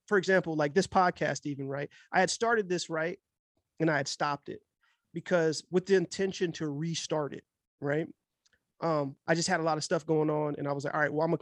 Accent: American